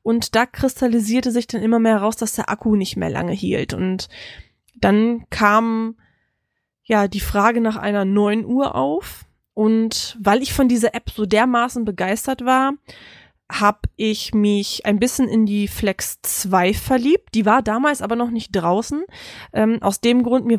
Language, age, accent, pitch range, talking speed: German, 20-39, German, 205-250 Hz, 170 wpm